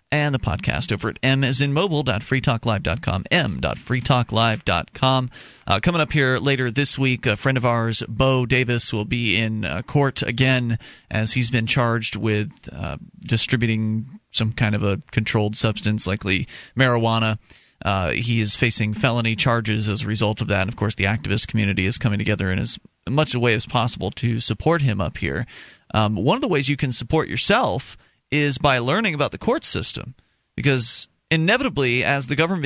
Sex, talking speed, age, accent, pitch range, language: male, 175 wpm, 30-49, American, 115-155 Hz, English